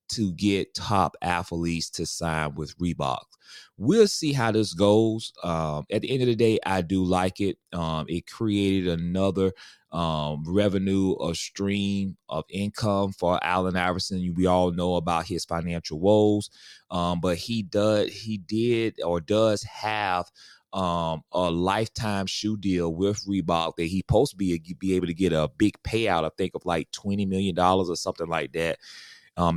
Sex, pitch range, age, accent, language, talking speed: male, 85-100 Hz, 30-49, American, English, 175 wpm